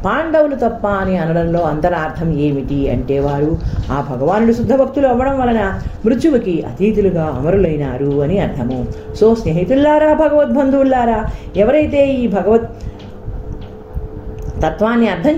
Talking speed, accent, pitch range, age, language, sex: 110 wpm, native, 145-240 Hz, 40-59, Telugu, female